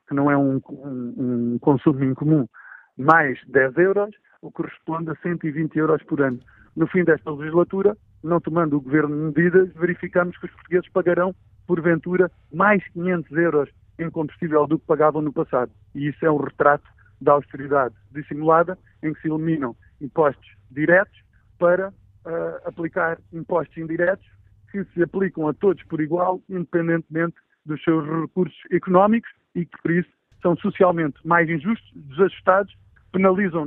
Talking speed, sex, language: 150 wpm, male, Portuguese